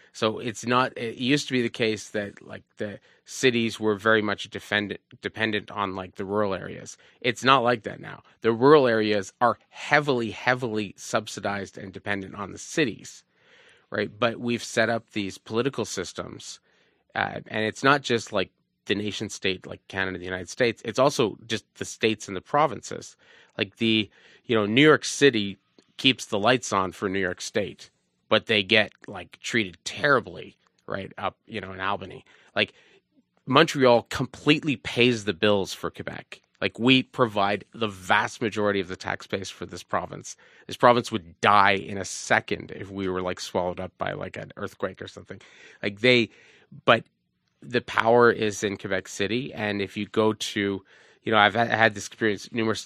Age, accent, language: 30-49, American, English